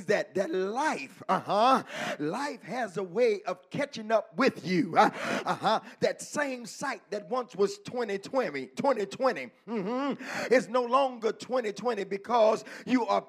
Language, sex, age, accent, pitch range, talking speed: English, male, 50-69, American, 220-275 Hz, 140 wpm